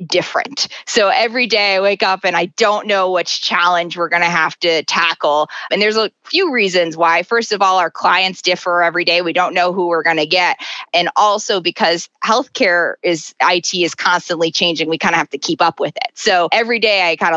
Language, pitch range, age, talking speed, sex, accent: English, 165-195 Hz, 20-39, 220 wpm, female, American